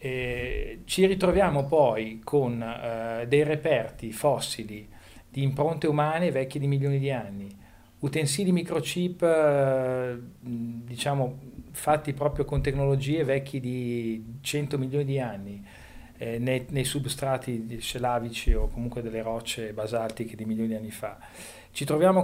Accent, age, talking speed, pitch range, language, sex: native, 40-59, 130 wpm, 115-145 Hz, Italian, male